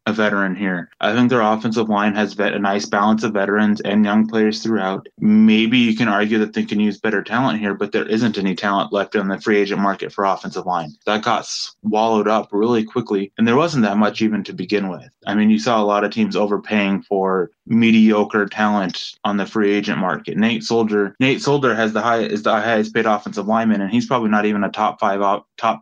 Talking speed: 230 wpm